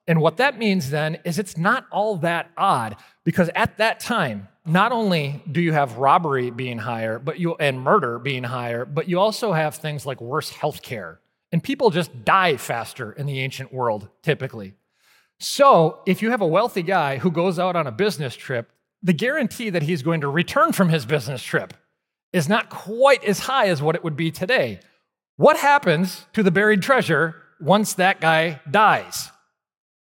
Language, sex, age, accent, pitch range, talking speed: English, male, 30-49, American, 135-190 Hz, 185 wpm